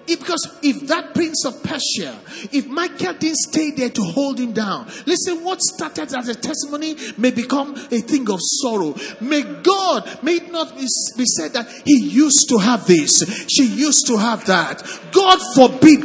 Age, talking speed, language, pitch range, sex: 50-69, 175 wpm, English, 250-330 Hz, male